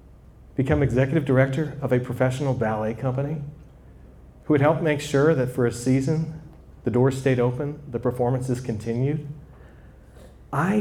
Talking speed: 140 wpm